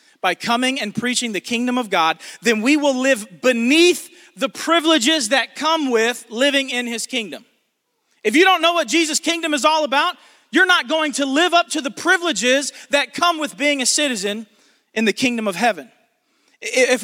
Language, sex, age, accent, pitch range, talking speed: English, male, 40-59, American, 220-290 Hz, 185 wpm